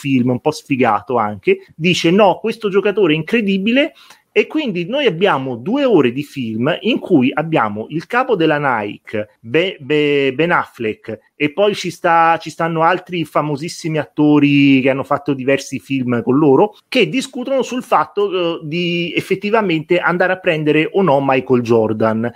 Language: English